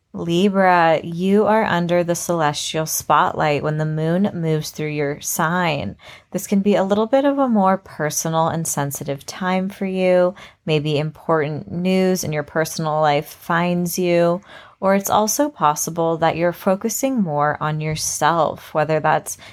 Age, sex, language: 30-49, female, English